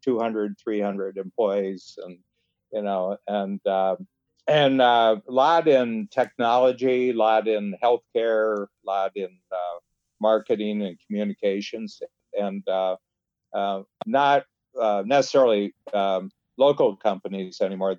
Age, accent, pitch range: 50-69, American, 95-125 Hz